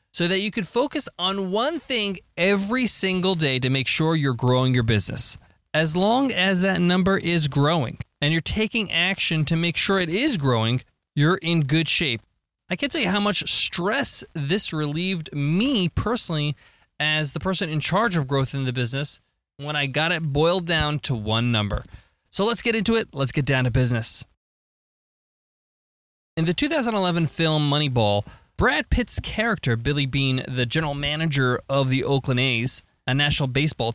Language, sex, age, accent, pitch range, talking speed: English, male, 20-39, American, 130-190 Hz, 175 wpm